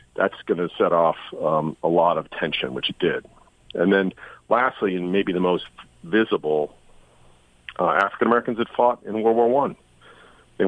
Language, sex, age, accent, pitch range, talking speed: English, male, 50-69, American, 85-110 Hz, 170 wpm